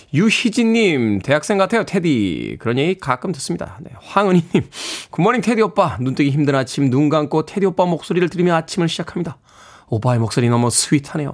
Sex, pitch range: male, 140-225 Hz